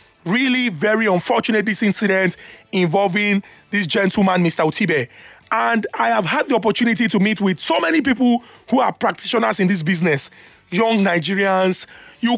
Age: 30-49